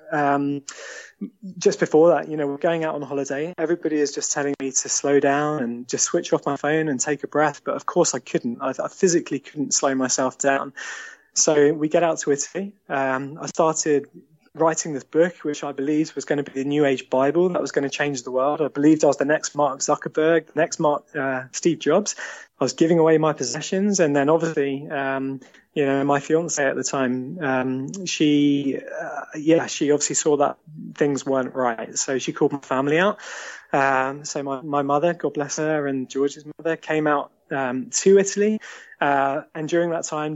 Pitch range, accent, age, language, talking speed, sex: 140-160 Hz, British, 20-39, English, 210 wpm, male